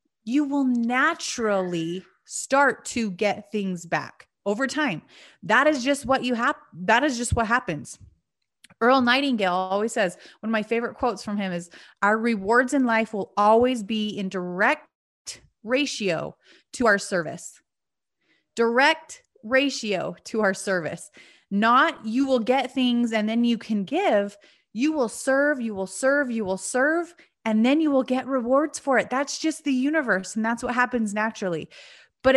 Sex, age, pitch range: female, 30-49, 205-265 Hz